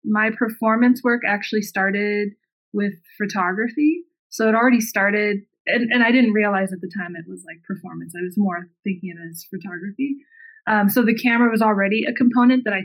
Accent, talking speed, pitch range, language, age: American, 190 wpm, 200-235 Hz, English, 20-39